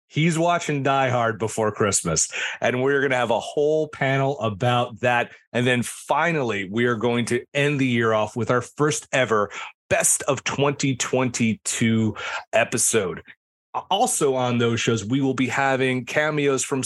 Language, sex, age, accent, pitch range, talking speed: English, male, 30-49, American, 110-135 Hz, 160 wpm